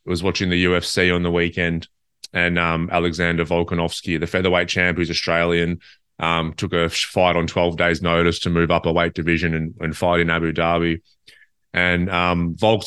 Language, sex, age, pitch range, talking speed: English, male, 20-39, 85-100 Hz, 180 wpm